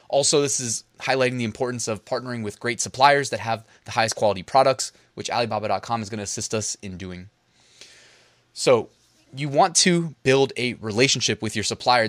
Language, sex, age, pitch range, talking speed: English, male, 20-39, 115-145 Hz, 180 wpm